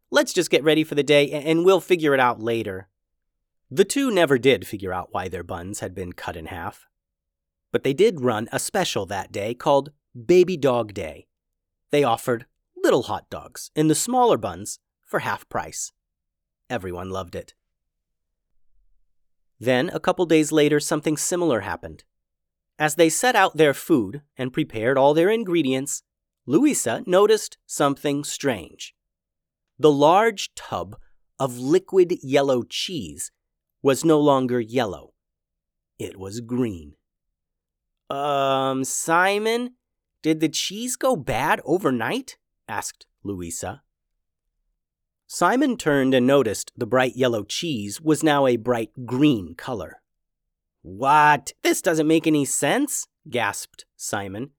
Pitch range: 100-160 Hz